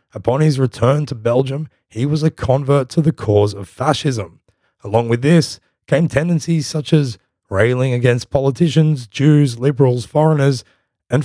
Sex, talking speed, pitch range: male, 150 wpm, 110-145 Hz